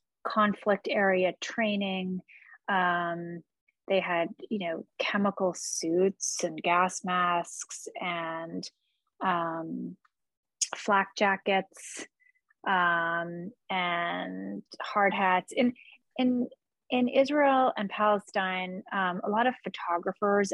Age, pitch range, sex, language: 30-49, 185-220 Hz, female, English